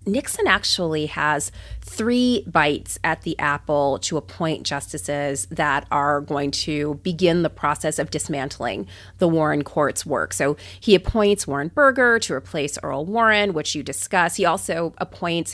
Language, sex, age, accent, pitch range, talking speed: English, female, 30-49, American, 165-205 Hz, 150 wpm